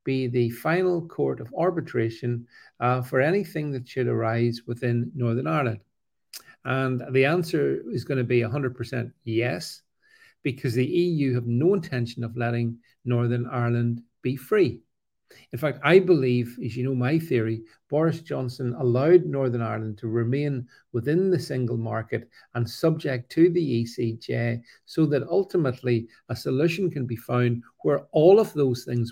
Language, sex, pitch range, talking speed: English, male, 120-150 Hz, 155 wpm